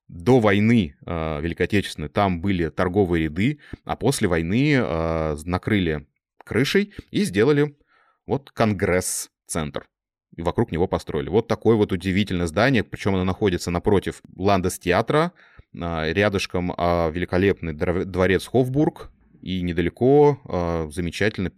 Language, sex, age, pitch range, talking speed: Russian, male, 20-39, 85-110 Hz, 105 wpm